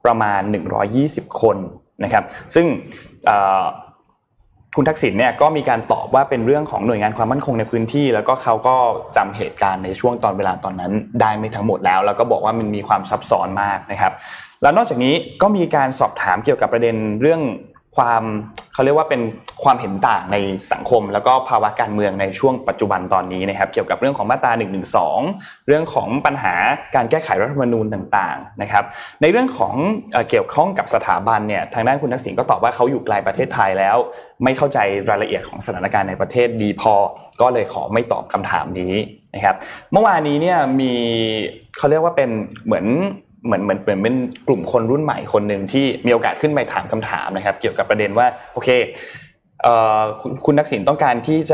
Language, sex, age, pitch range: Thai, male, 20-39, 105-135 Hz